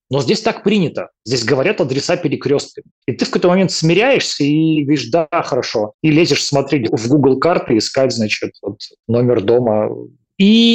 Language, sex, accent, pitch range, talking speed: Russian, male, native, 125-165 Hz, 170 wpm